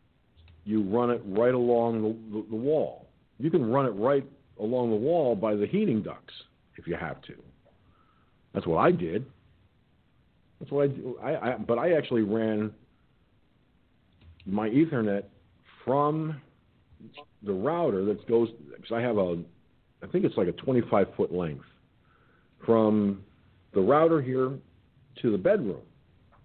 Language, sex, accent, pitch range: English, male, American, 95-130 Hz